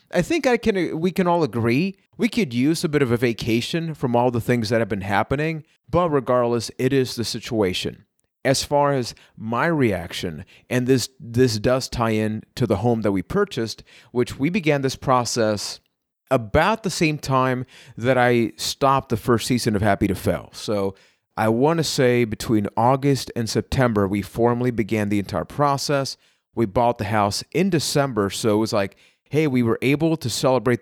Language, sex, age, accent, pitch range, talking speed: English, male, 30-49, American, 110-140 Hz, 190 wpm